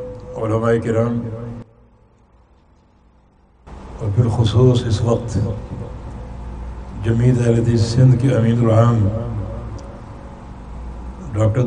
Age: 60-79